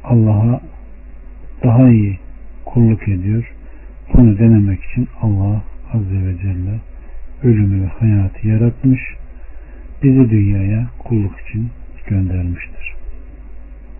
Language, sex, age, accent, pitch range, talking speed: Turkish, male, 60-79, native, 95-125 Hz, 90 wpm